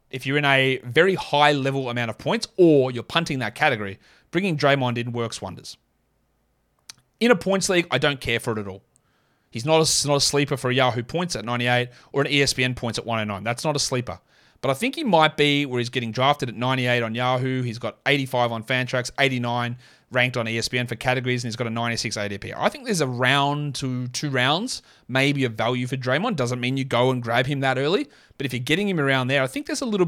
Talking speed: 235 wpm